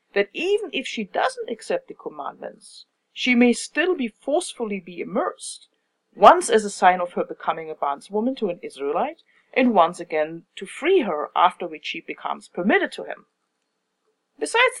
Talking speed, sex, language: 165 wpm, female, English